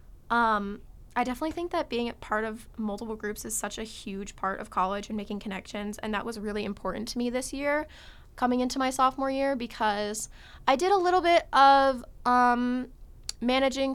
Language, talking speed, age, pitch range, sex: English, 190 wpm, 10-29, 210-250 Hz, female